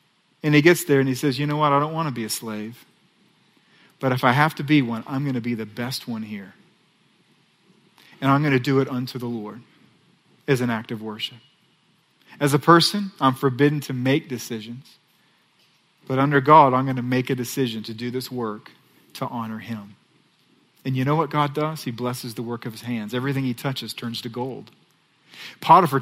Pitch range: 125-155 Hz